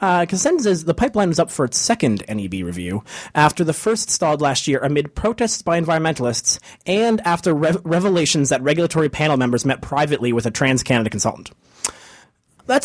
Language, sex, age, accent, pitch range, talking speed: English, male, 30-49, American, 125-170 Hz, 175 wpm